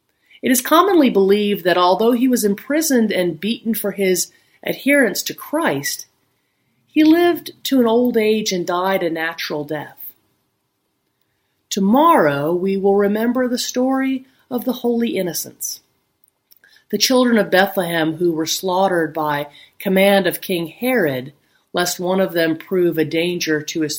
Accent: American